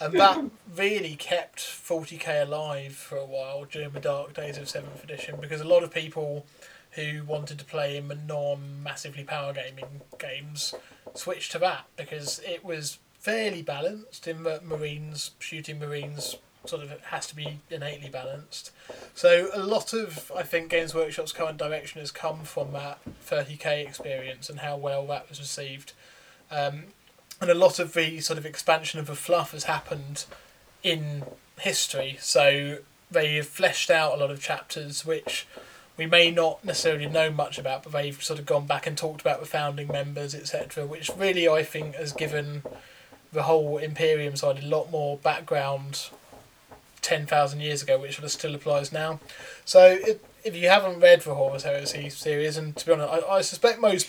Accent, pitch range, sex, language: British, 145-165 Hz, male, English